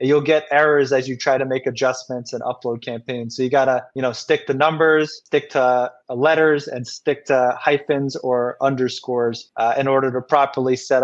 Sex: male